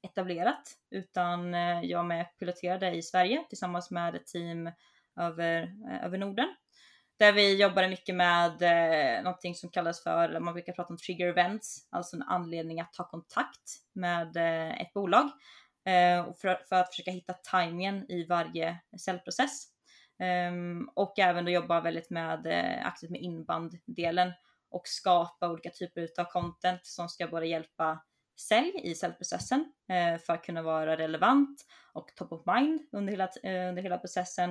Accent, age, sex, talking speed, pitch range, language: native, 20-39, female, 150 wpm, 170-190 Hz, Swedish